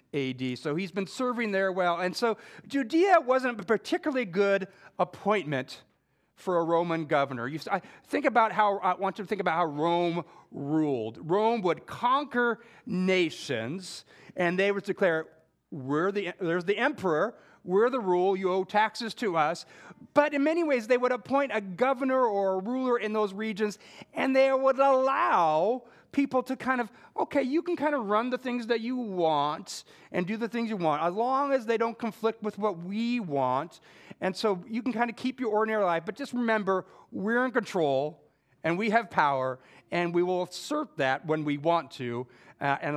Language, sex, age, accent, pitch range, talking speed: English, male, 40-59, American, 170-240 Hz, 185 wpm